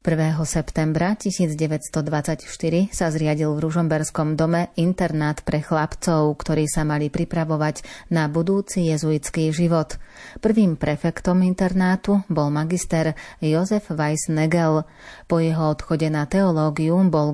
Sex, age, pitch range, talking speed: female, 30-49, 155-170 Hz, 110 wpm